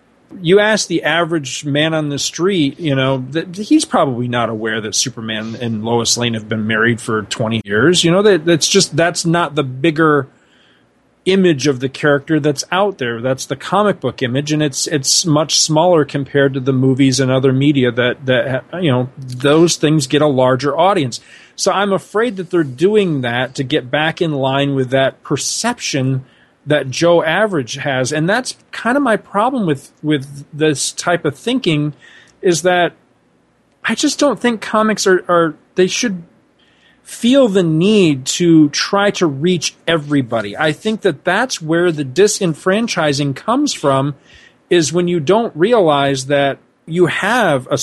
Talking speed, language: 170 wpm, English